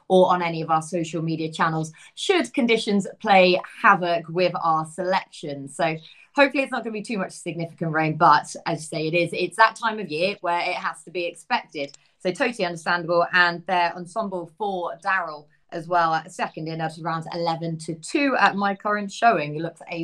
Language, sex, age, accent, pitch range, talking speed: English, female, 20-39, British, 165-195 Hz, 200 wpm